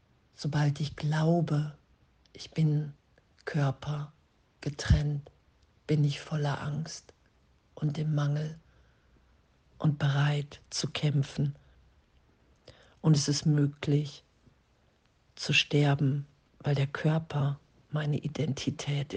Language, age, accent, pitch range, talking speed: German, 50-69, German, 145-160 Hz, 90 wpm